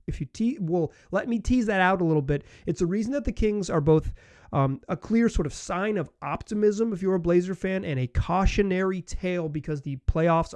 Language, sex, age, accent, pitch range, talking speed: English, male, 30-49, American, 125-170 Hz, 225 wpm